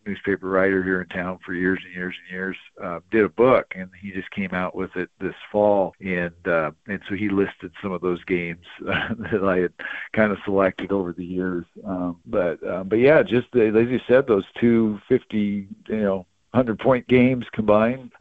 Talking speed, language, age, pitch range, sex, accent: 210 wpm, English, 50-69, 95-110 Hz, male, American